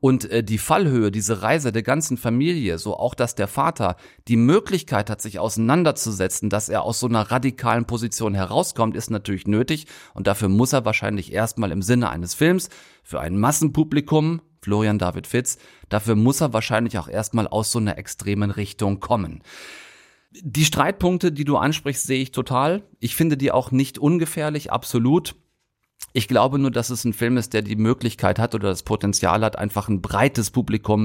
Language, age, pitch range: German, 30-49, 105-140 Hz